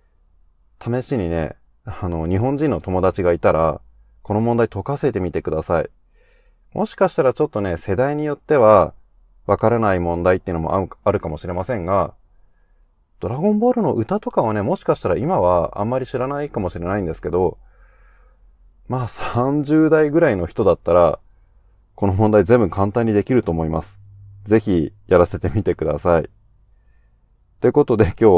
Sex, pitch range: male, 85-120 Hz